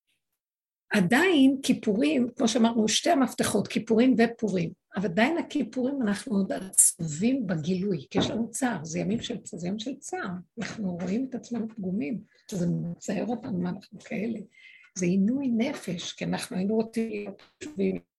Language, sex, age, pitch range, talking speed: Hebrew, female, 60-79, 195-255 Hz, 145 wpm